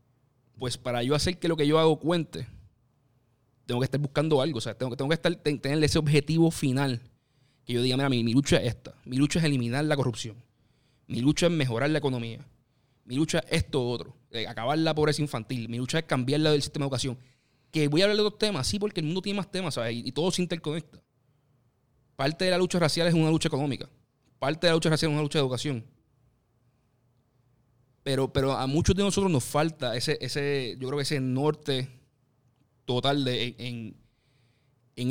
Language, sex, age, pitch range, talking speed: Spanish, male, 30-49, 125-155 Hz, 215 wpm